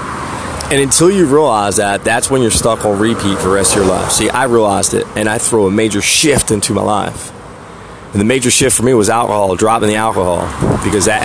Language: English